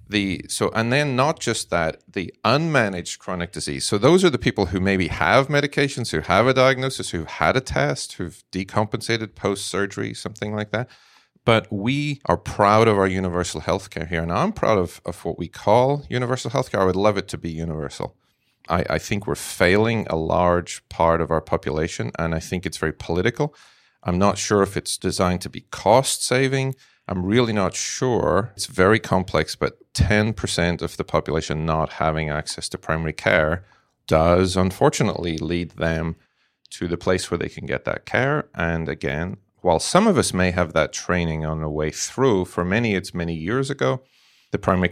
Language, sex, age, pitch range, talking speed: Hebrew, male, 40-59, 85-105 Hz, 190 wpm